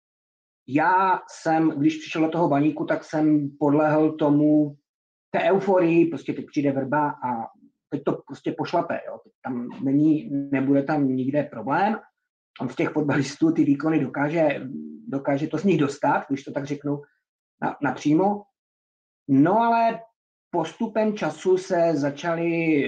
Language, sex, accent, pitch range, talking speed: Czech, male, native, 140-170 Hz, 135 wpm